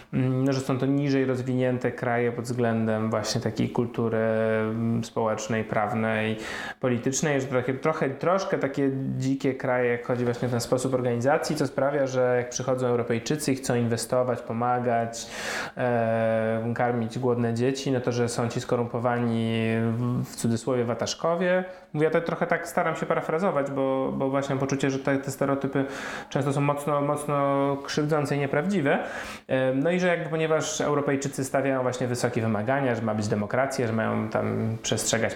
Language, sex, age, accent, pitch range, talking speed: Polish, male, 20-39, native, 120-140 Hz, 160 wpm